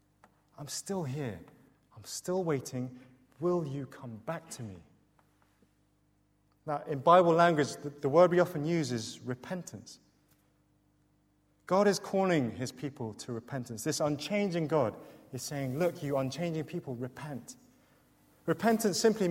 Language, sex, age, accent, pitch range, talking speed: English, male, 30-49, British, 135-180 Hz, 135 wpm